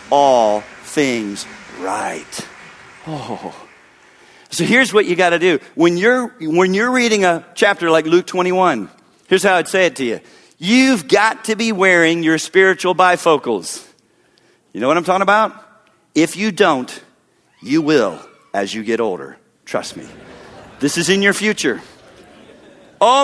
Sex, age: male, 50-69